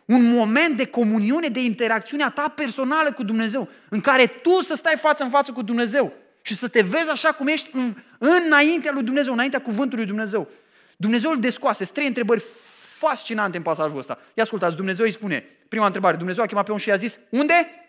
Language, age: Romanian, 20-39